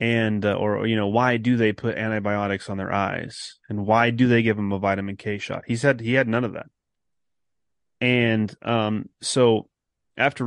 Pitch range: 105-125 Hz